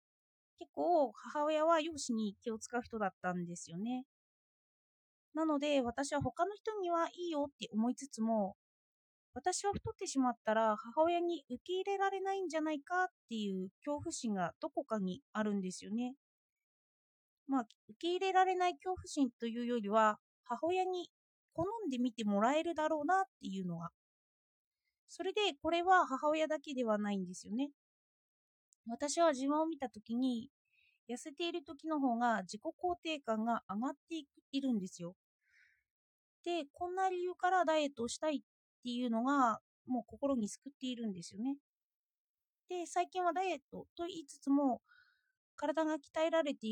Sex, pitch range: female, 225-330 Hz